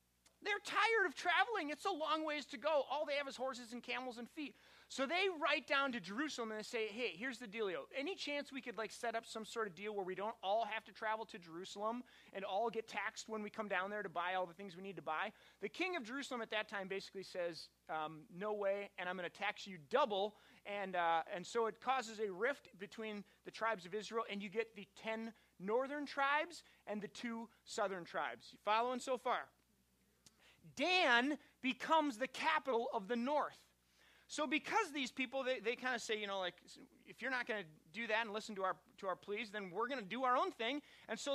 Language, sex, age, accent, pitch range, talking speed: English, male, 30-49, American, 200-270 Hz, 235 wpm